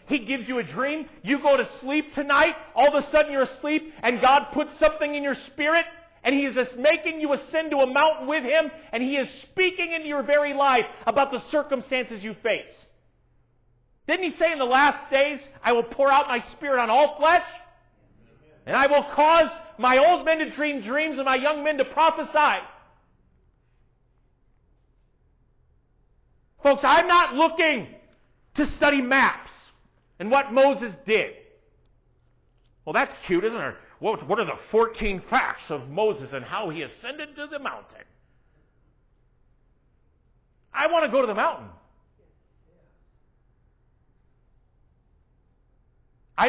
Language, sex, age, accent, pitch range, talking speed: English, male, 40-59, American, 255-310 Hz, 150 wpm